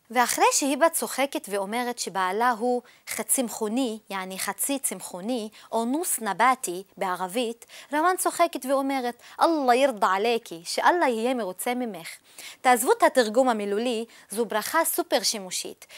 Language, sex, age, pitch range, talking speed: Hebrew, female, 20-39, 220-285 Hz, 130 wpm